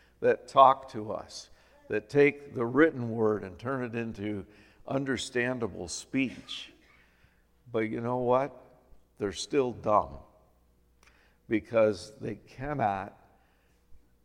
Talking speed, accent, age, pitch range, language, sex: 105 wpm, American, 60-79, 100-135 Hz, English, male